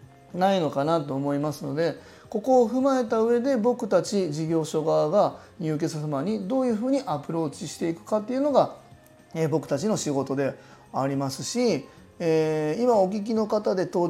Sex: male